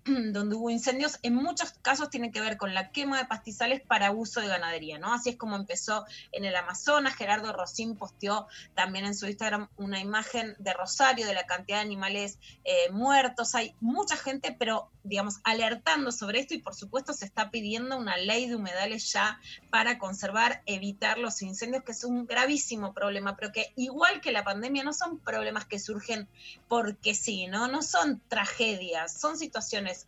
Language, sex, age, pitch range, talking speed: Spanish, female, 20-39, 205-260 Hz, 185 wpm